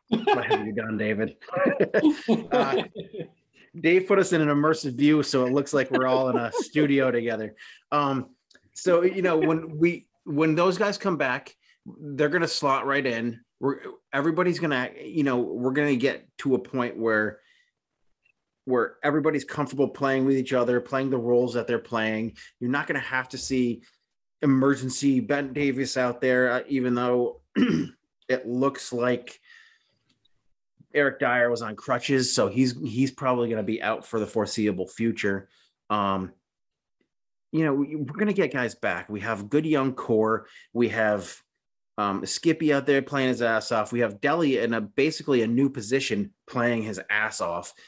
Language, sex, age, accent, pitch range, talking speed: English, male, 30-49, American, 115-150 Hz, 175 wpm